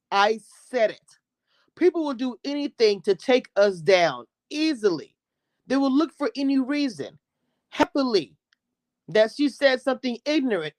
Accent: American